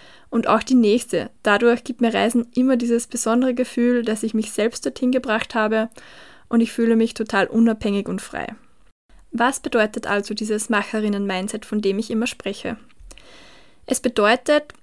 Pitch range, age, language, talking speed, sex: 215-245 Hz, 20-39, German, 160 wpm, female